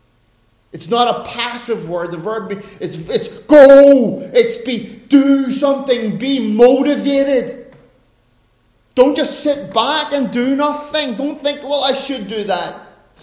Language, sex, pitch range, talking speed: English, male, 180-280 Hz, 140 wpm